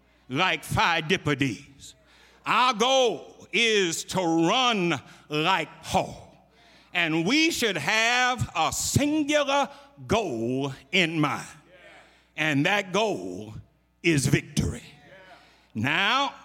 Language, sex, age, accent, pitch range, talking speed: English, male, 60-79, American, 150-215 Hz, 85 wpm